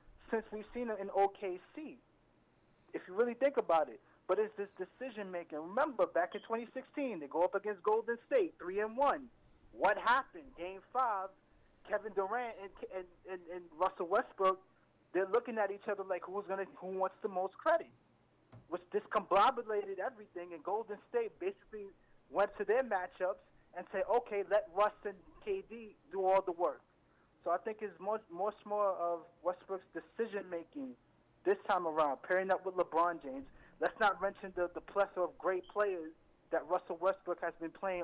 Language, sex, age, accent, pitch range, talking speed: English, male, 30-49, American, 170-215 Hz, 170 wpm